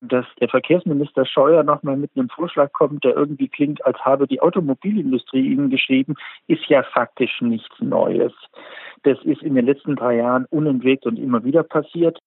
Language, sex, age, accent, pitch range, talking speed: German, male, 50-69, German, 130-160 Hz, 175 wpm